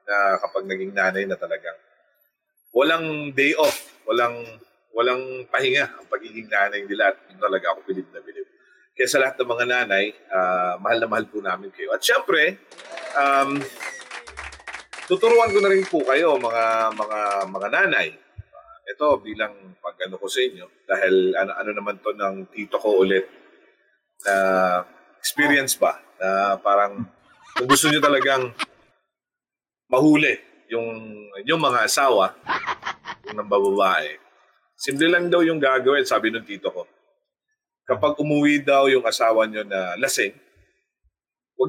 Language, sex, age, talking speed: Filipino, male, 30-49, 140 wpm